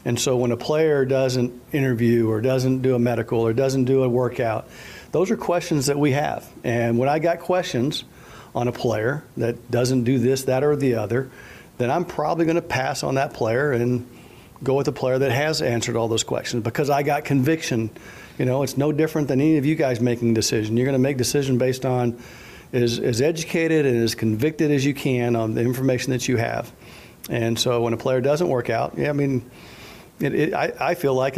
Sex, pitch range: male, 120-140 Hz